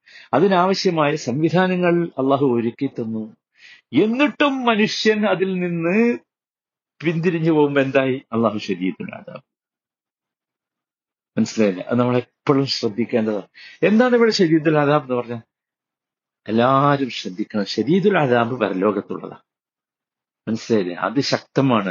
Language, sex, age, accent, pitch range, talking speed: Malayalam, male, 50-69, native, 130-185 Hz, 90 wpm